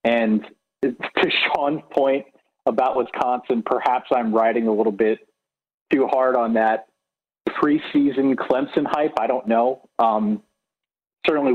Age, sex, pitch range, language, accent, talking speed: 40-59, male, 110-135 Hz, English, American, 125 wpm